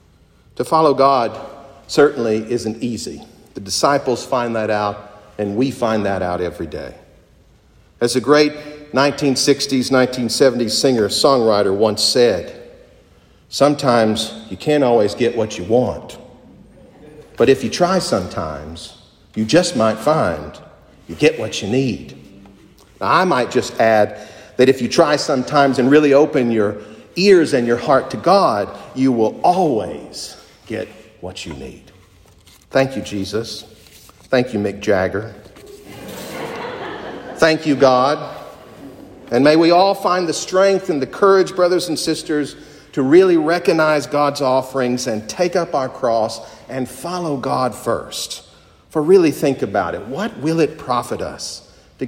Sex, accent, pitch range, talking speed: male, American, 105-145 Hz, 140 wpm